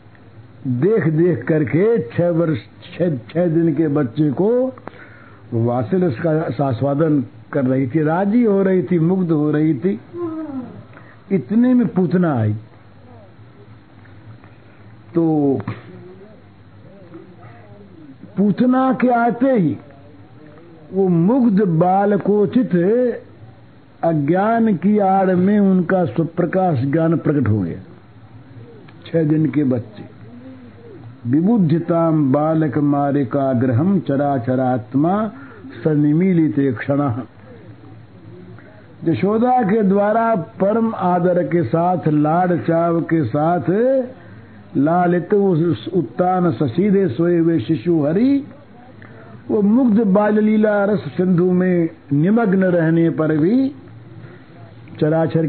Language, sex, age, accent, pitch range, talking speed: Hindi, male, 60-79, native, 125-185 Hz, 90 wpm